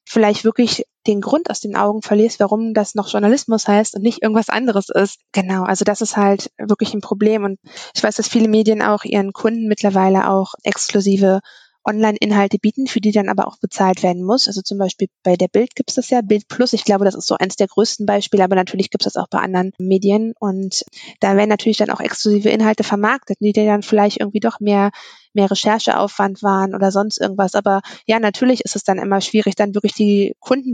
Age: 20-39